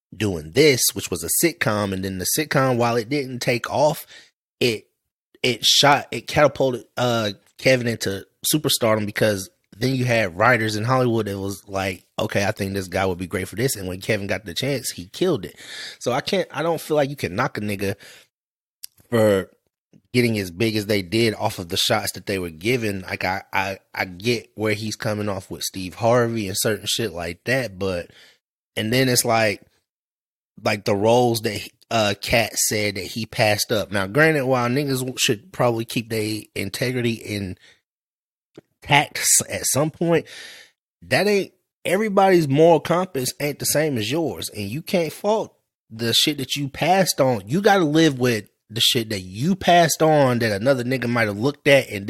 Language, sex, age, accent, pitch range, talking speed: English, male, 30-49, American, 105-135 Hz, 190 wpm